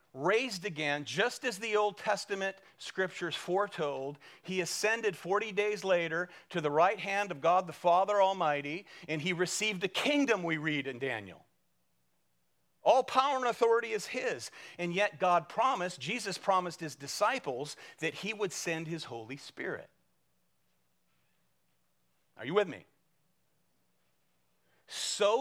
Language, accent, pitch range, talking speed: English, American, 145-200 Hz, 135 wpm